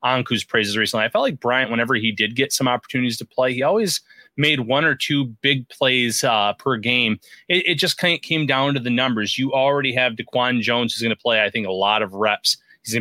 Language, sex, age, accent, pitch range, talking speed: English, male, 30-49, American, 115-135 Hz, 245 wpm